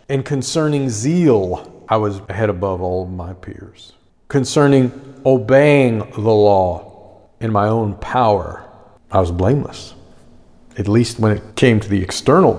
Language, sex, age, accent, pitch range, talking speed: English, male, 40-59, American, 95-115 Hz, 140 wpm